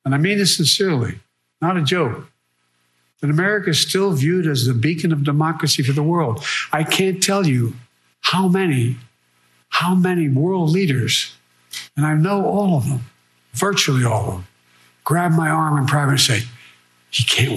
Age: 60-79